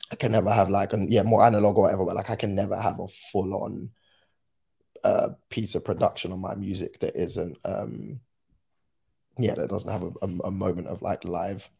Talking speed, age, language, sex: 210 wpm, 10-29, English, male